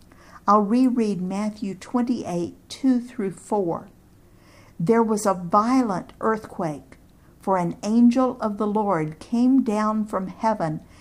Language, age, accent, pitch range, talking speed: English, 50-69, American, 170-230 Hz, 120 wpm